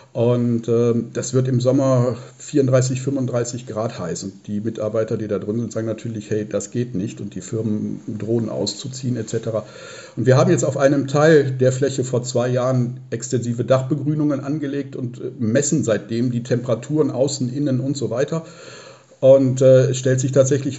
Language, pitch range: German, 115-135 Hz